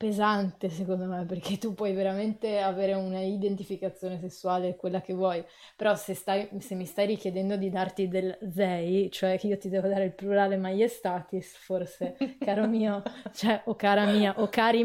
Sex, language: female, Italian